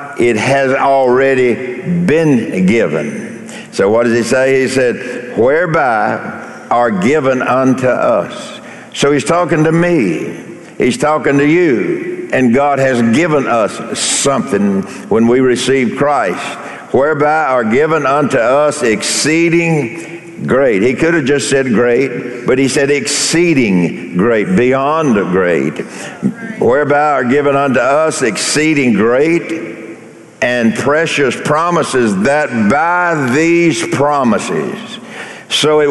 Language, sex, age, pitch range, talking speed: English, male, 60-79, 125-160 Hz, 120 wpm